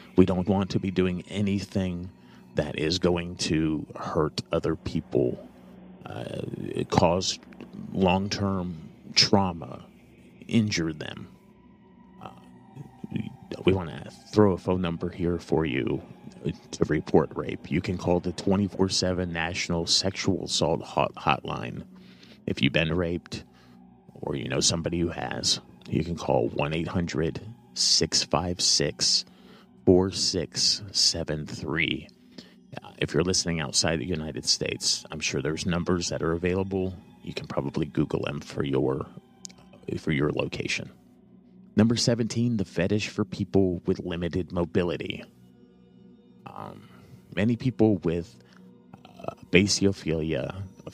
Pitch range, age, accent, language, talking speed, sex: 80-95 Hz, 30-49, American, English, 120 wpm, male